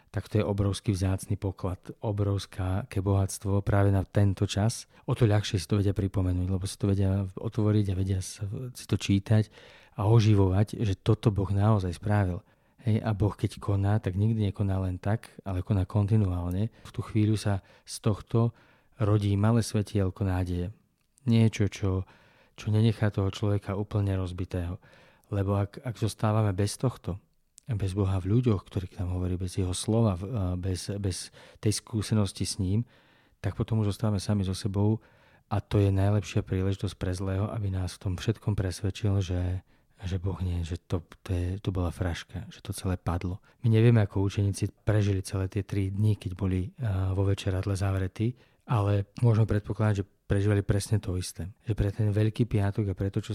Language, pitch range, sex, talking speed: Slovak, 95-110 Hz, male, 175 wpm